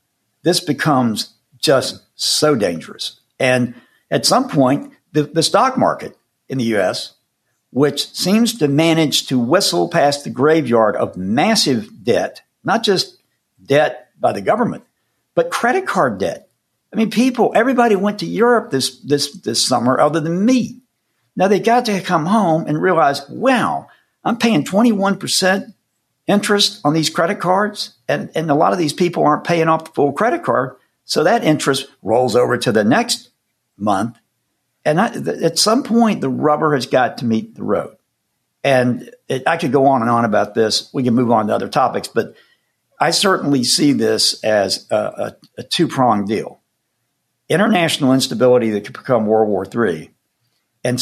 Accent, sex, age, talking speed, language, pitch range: American, male, 60-79, 165 wpm, English, 125-200 Hz